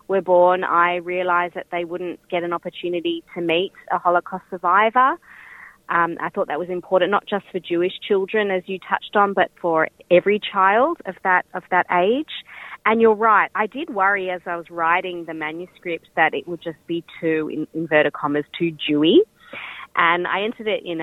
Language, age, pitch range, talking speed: Hebrew, 30-49, 160-190 Hz, 190 wpm